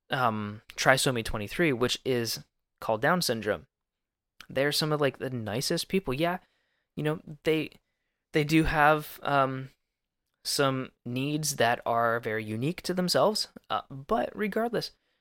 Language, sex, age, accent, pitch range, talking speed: English, male, 20-39, American, 120-150 Hz, 140 wpm